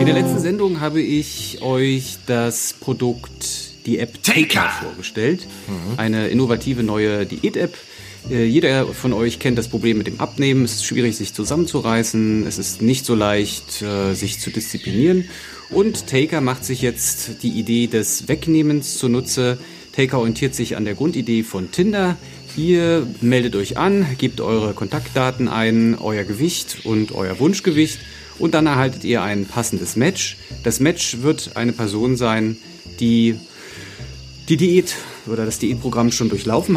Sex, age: male, 40-59